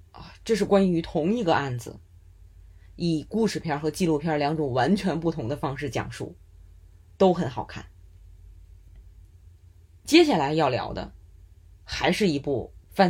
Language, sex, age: Chinese, female, 20-39